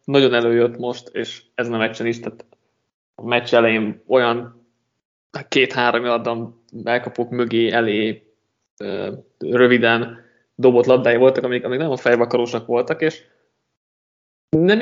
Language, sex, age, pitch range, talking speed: Hungarian, male, 20-39, 115-130 Hz, 125 wpm